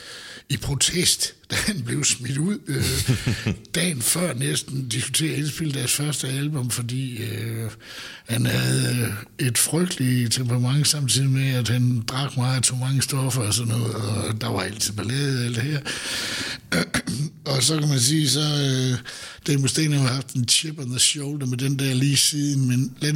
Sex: male